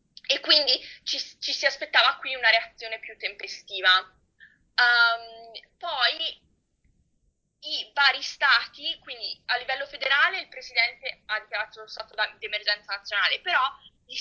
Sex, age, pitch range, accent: female, 20-39, 220-290 Hz, native